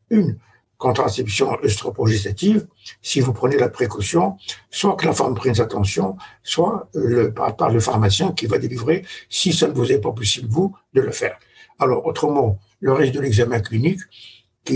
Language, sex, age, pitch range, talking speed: French, male, 60-79, 105-130 Hz, 170 wpm